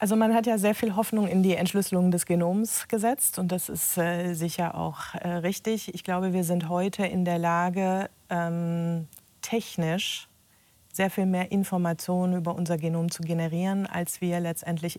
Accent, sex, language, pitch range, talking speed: German, female, German, 170-185 Hz, 170 wpm